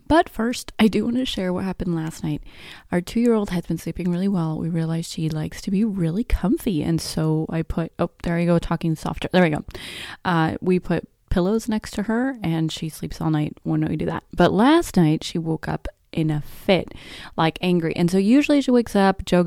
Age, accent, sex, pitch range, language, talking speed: 20-39, American, female, 150-180 Hz, English, 225 wpm